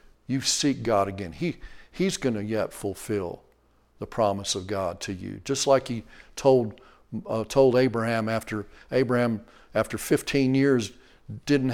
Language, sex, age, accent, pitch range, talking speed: English, male, 50-69, American, 100-130 Hz, 150 wpm